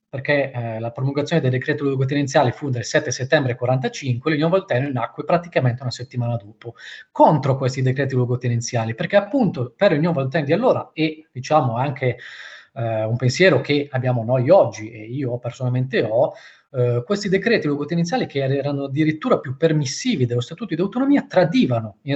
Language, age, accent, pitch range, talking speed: Italian, 20-39, native, 125-155 Hz, 160 wpm